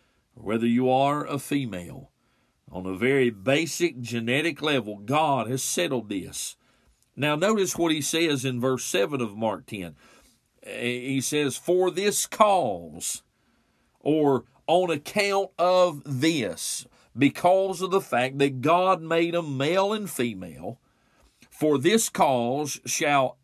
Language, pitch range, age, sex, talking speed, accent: English, 125-150 Hz, 50-69, male, 130 wpm, American